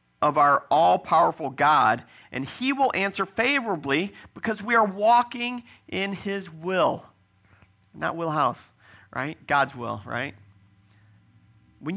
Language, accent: English, American